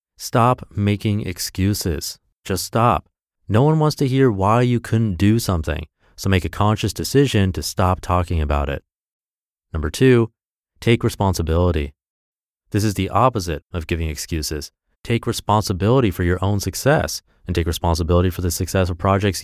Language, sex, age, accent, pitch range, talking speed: English, male, 30-49, American, 85-115 Hz, 155 wpm